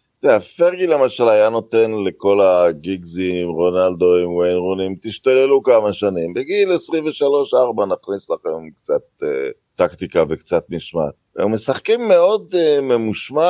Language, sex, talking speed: Hebrew, male, 120 wpm